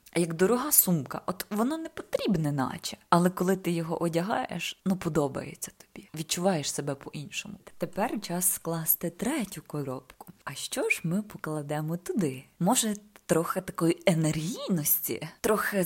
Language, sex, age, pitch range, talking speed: Ukrainian, female, 20-39, 155-200 Hz, 130 wpm